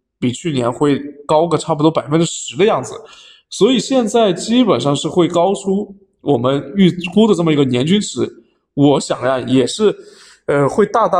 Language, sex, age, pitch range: Chinese, male, 20-39, 140-200 Hz